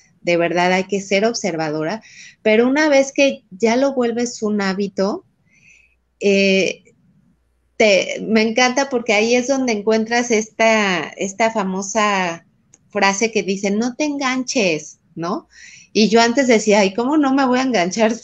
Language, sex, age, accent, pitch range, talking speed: Spanish, female, 30-49, Mexican, 180-225 Hz, 145 wpm